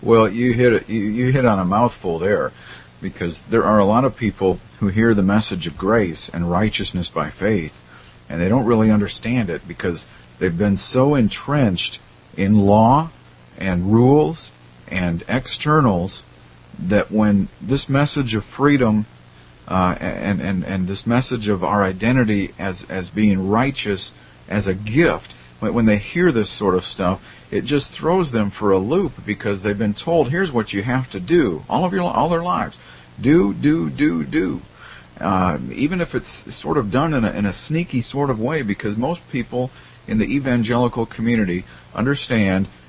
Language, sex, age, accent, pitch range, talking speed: English, male, 50-69, American, 95-130 Hz, 170 wpm